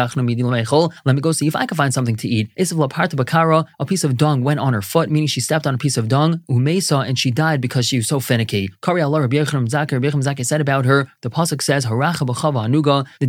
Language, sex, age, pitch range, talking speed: English, male, 20-39, 130-155 Hz, 165 wpm